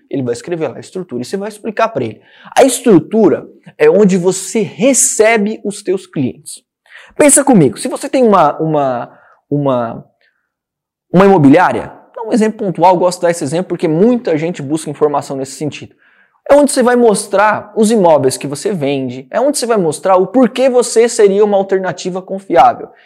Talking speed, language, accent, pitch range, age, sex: 180 wpm, Portuguese, Brazilian, 165-240 Hz, 20-39, male